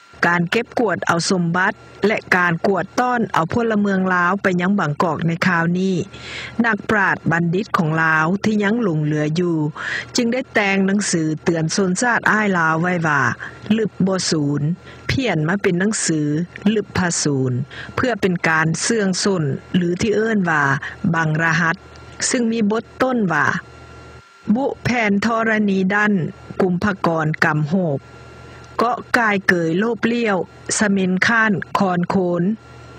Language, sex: Thai, female